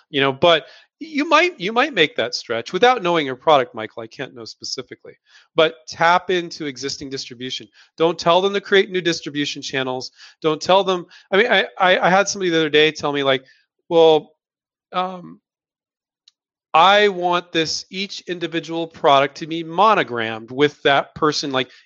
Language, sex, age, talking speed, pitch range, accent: English, male, 30-49, 170 wpm, 140-185 Hz, American